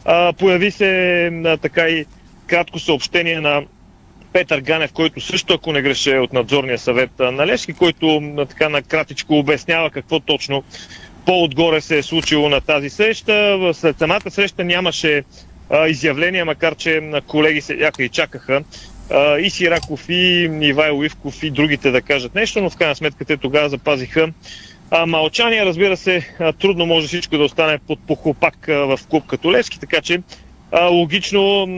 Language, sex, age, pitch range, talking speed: Bulgarian, male, 40-59, 145-175 Hz, 150 wpm